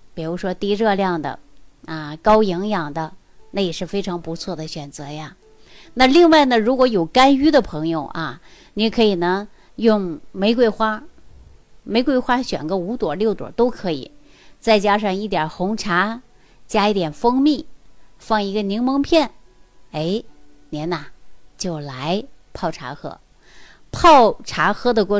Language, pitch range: Chinese, 170-225 Hz